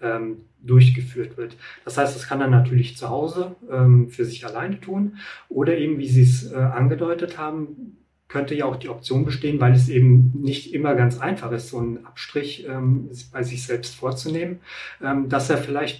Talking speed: 185 wpm